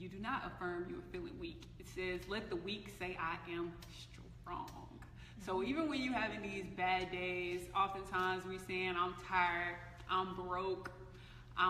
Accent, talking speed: American, 170 wpm